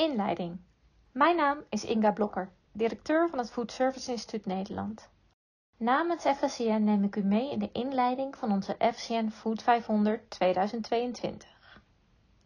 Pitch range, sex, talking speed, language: 205-255 Hz, female, 135 wpm, Dutch